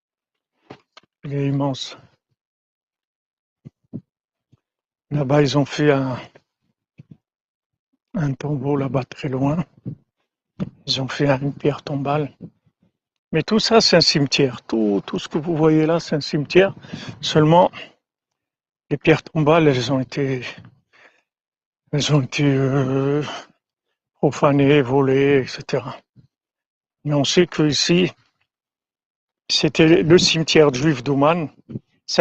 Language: French